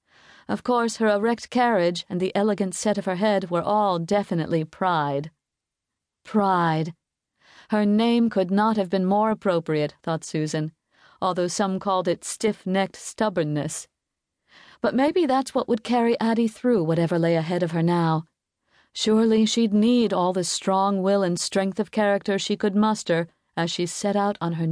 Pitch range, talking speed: 170-220 Hz, 165 wpm